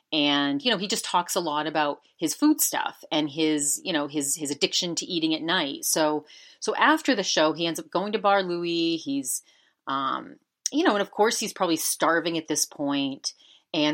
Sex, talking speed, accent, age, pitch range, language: female, 210 wpm, American, 30-49, 165-230 Hz, English